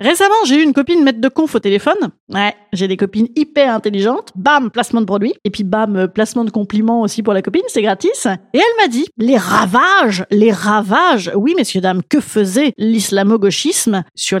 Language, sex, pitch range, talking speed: French, female, 210-295 Hz, 190 wpm